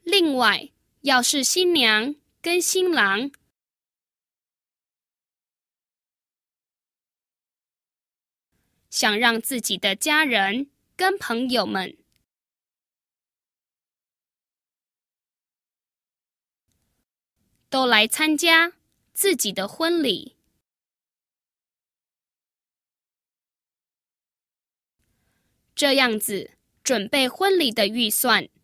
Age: 10-29